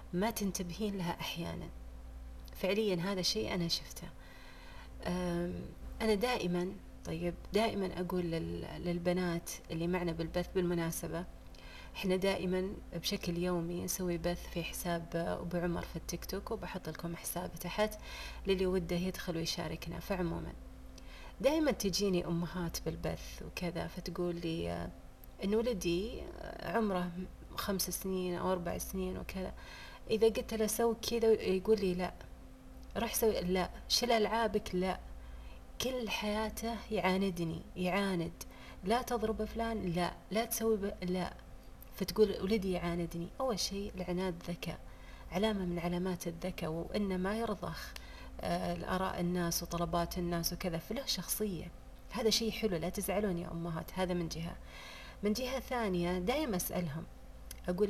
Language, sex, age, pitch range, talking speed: Arabic, female, 30-49, 170-210 Hz, 125 wpm